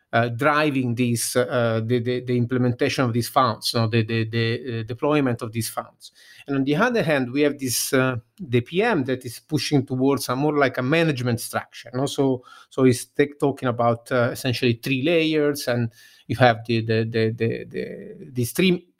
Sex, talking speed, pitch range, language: male, 200 wpm, 125-145 Hz, English